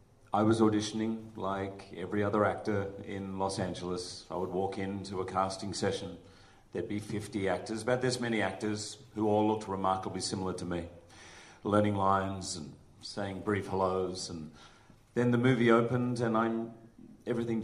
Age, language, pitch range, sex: 40-59, Chinese, 95-110 Hz, male